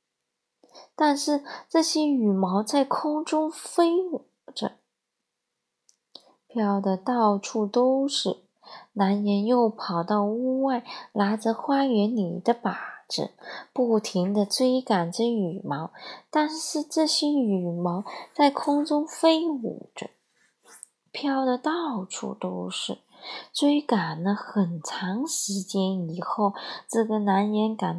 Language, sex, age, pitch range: Chinese, female, 20-39, 195-265 Hz